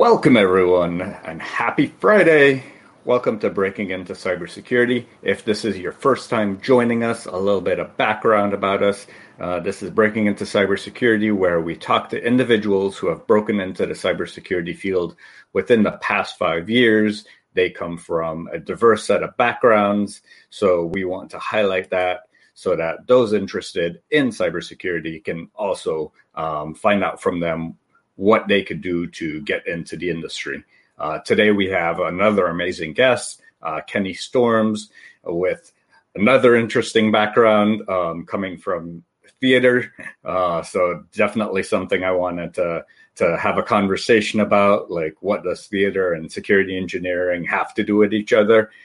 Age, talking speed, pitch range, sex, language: 40-59, 155 wpm, 90-110 Hz, male, English